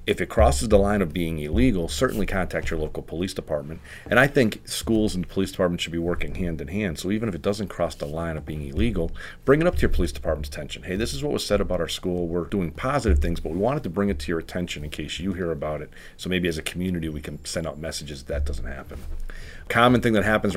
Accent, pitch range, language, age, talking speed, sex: American, 75-95 Hz, English, 40-59, 265 wpm, male